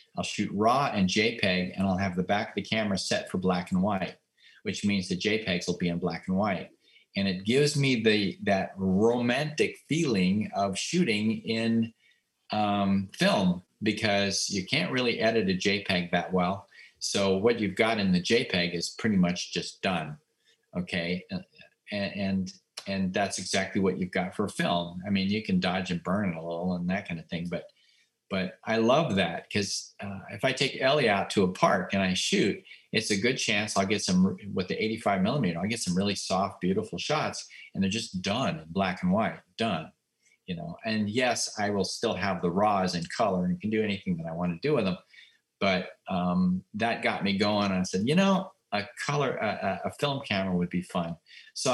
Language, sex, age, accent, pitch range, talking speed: English, male, 40-59, American, 90-110 Hz, 205 wpm